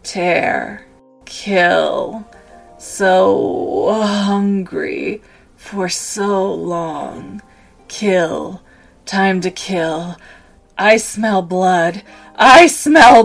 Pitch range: 190-235 Hz